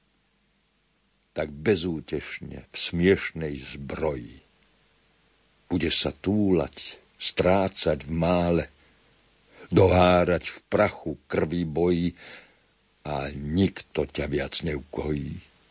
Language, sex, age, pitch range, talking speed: Slovak, male, 60-79, 80-105 Hz, 80 wpm